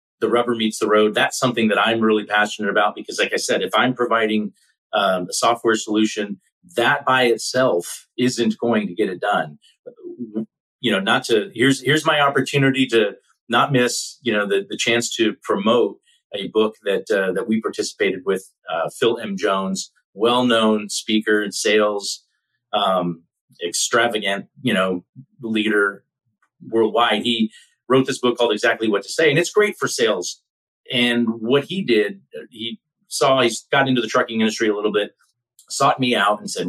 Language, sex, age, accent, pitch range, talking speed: English, male, 30-49, American, 105-145 Hz, 175 wpm